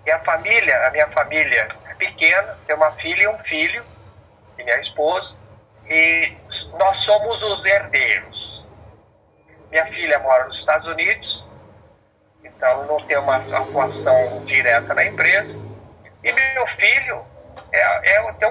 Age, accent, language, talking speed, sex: 50-69, Brazilian, Portuguese, 130 wpm, male